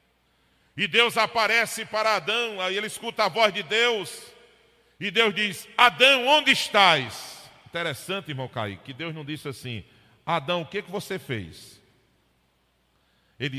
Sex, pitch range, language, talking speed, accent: male, 160-245 Hz, Portuguese, 145 wpm, Brazilian